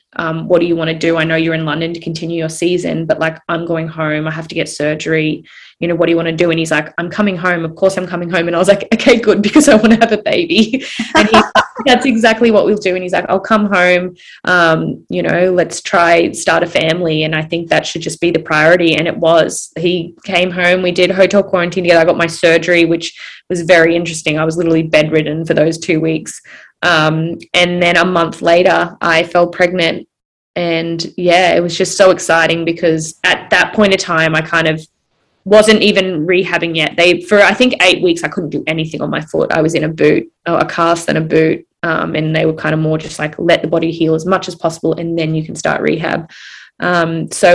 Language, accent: English, Australian